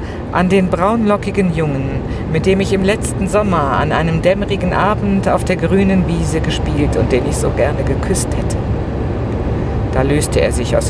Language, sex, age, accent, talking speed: German, female, 50-69, German, 170 wpm